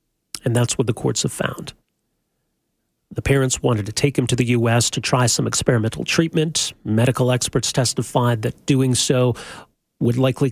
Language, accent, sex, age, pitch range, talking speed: English, American, male, 40-59, 115-145 Hz, 165 wpm